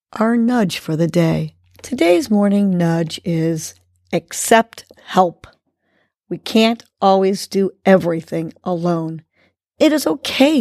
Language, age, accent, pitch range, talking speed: English, 50-69, American, 165-240 Hz, 115 wpm